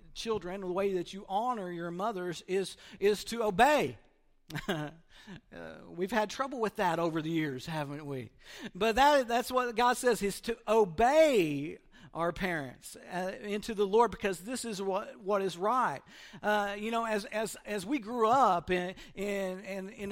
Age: 50-69